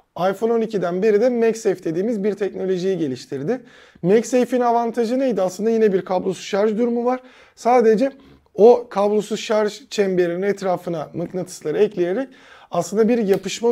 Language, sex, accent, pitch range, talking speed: Turkish, male, native, 175-225 Hz, 130 wpm